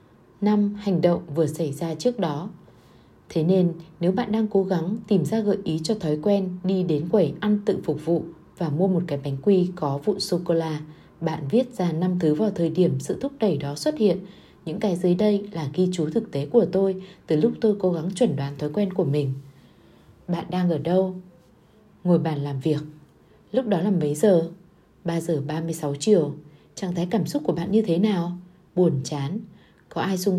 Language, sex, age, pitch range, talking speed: Vietnamese, female, 20-39, 160-200 Hz, 205 wpm